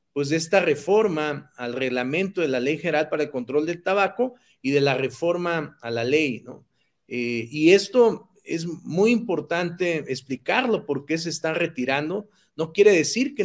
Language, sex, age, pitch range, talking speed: Spanish, male, 40-59, 135-180 Hz, 170 wpm